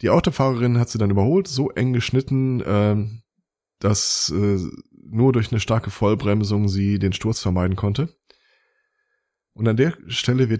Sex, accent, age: male, German, 20-39